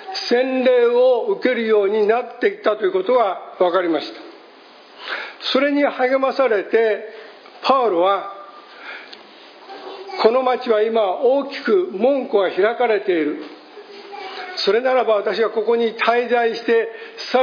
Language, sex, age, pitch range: Japanese, male, 60-79, 200-290 Hz